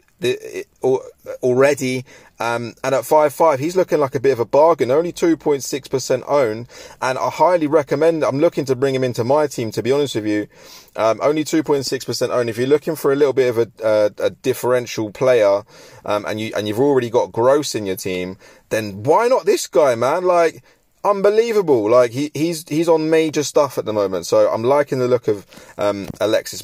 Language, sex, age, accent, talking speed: English, male, 30-49, British, 205 wpm